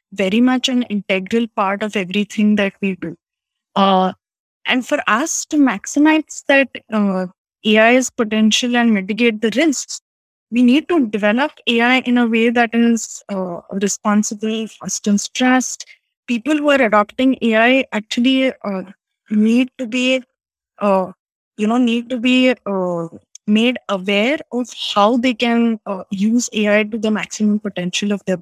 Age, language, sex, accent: 20-39, English, female, Indian